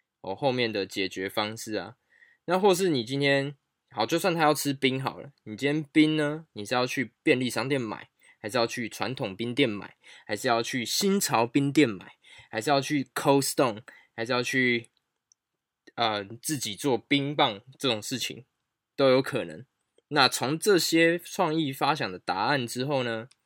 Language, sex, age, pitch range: Chinese, male, 20-39, 115-145 Hz